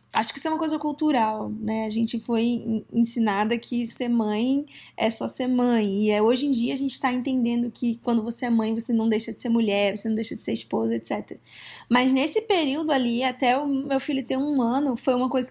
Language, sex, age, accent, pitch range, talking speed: Portuguese, female, 20-39, Brazilian, 230-275 Hz, 230 wpm